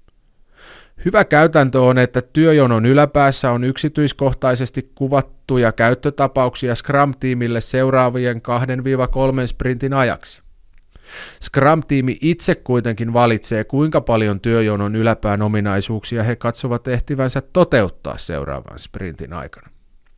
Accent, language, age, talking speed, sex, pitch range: native, Finnish, 30-49, 90 wpm, male, 100-135 Hz